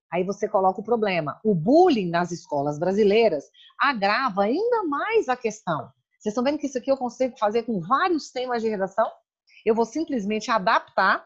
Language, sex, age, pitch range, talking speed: Portuguese, female, 30-49, 180-245 Hz, 175 wpm